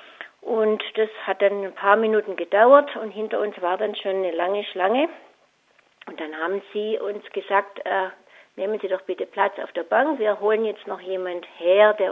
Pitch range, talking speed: 190-225 Hz, 195 wpm